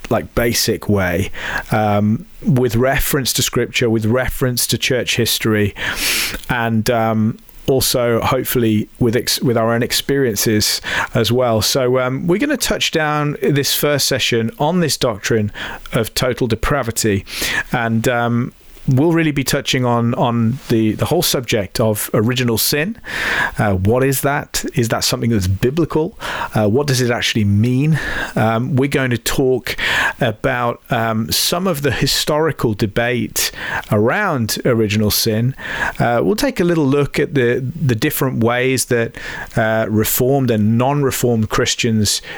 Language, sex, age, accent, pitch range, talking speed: English, male, 40-59, British, 115-140 Hz, 145 wpm